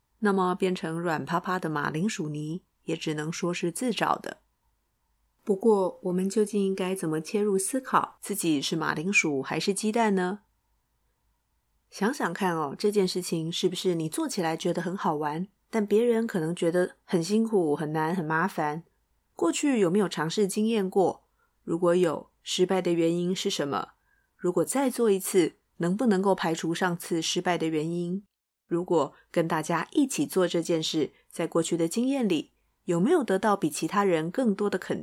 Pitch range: 170-210 Hz